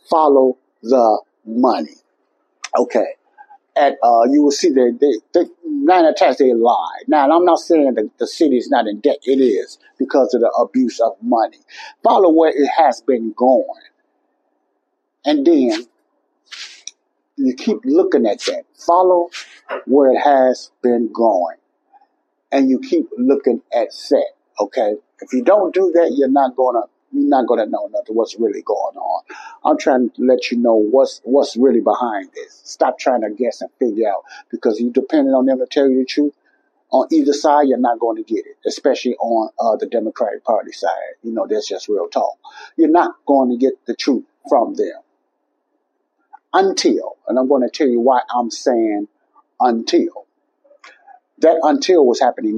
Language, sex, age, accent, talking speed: English, male, 60-79, American, 175 wpm